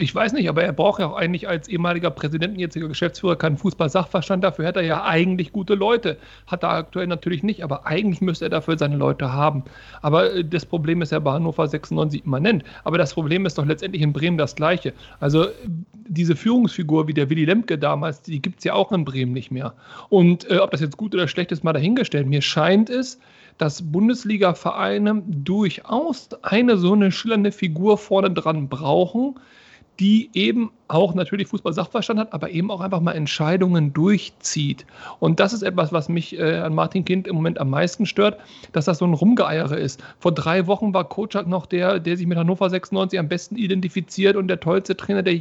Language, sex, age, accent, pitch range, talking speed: German, male, 40-59, German, 160-195 Hz, 200 wpm